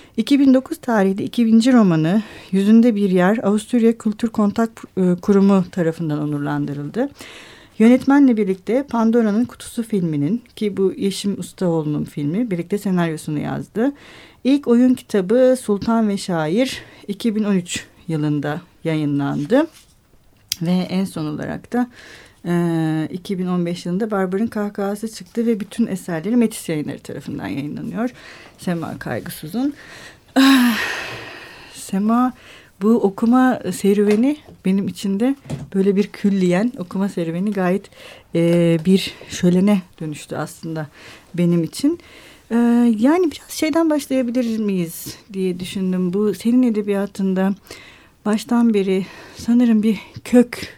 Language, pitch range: Turkish, 180-235 Hz